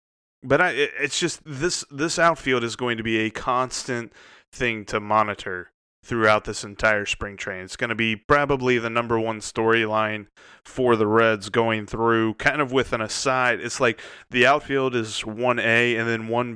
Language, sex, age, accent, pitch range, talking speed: English, male, 20-39, American, 110-130 Hz, 180 wpm